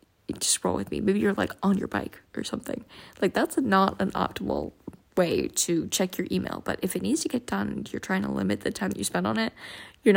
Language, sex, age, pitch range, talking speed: English, female, 10-29, 185-220 Hz, 240 wpm